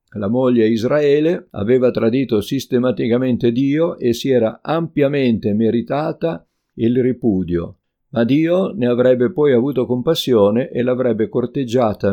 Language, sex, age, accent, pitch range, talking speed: Italian, male, 50-69, native, 110-135 Hz, 120 wpm